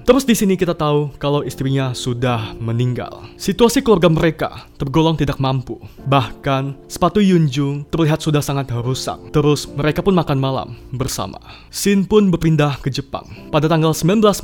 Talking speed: 150 wpm